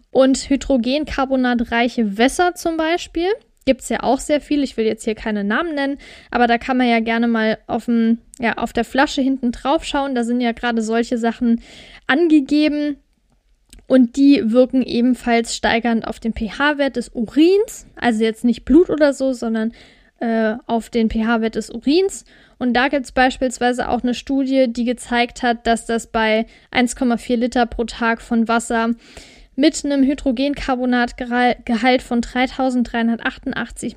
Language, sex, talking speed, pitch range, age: German, female, 155 wpm, 230-275 Hz, 10-29